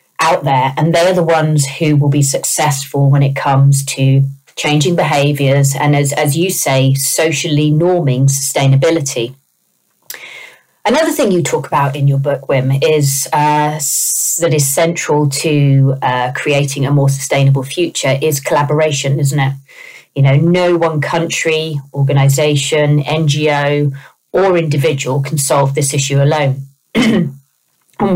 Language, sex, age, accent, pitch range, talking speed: English, female, 30-49, British, 140-160 Hz, 135 wpm